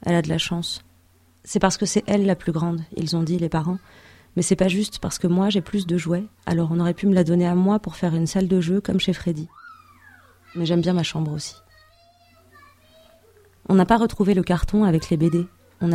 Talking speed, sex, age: 235 wpm, female, 30-49